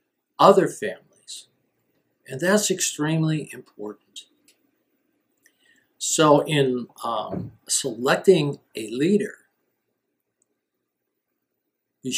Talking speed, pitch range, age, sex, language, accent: 65 wpm, 125-185 Hz, 60-79, male, English, American